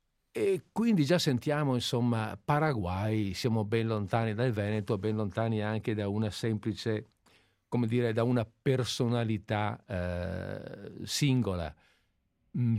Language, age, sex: Italian, 50-69, male